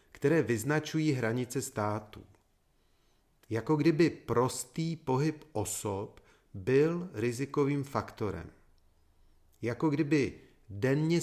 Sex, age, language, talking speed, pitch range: male, 40-59, Czech, 80 wpm, 105-150 Hz